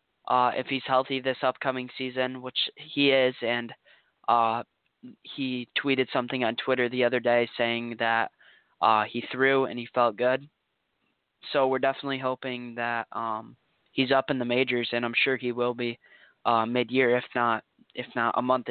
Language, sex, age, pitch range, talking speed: English, male, 20-39, 120-135 Hz, 175 wpm